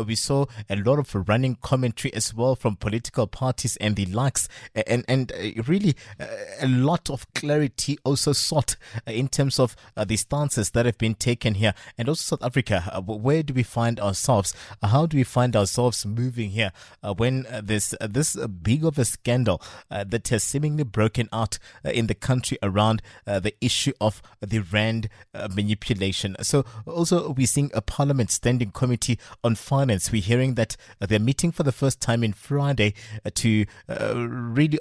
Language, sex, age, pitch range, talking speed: English, male, 20-39, 110-135 Hz, 165 wpm